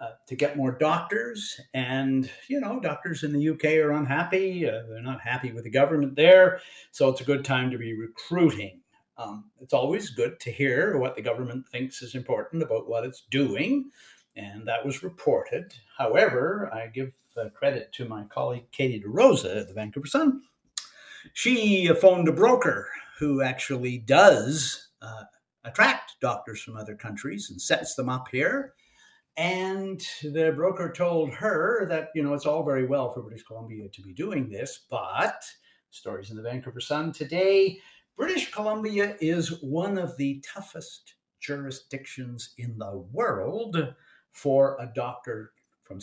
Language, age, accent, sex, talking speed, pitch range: English, 50-69, American, male, 160 wpm, 120-175 Hz